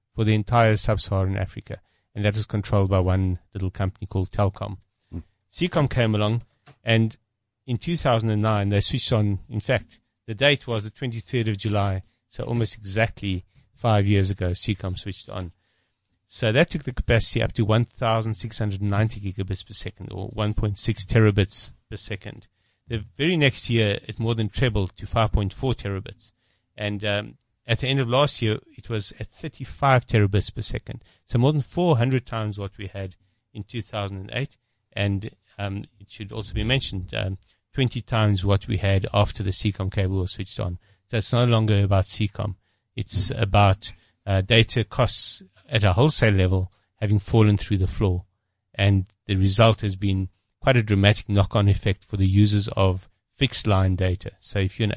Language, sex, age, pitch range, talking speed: English, male, 40-59, 100-115 Hz, 170 wpm